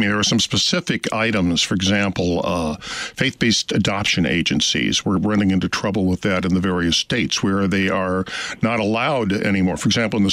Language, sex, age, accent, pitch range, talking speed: English, male, 50-69, American, 100-120 Hz, 190 wpm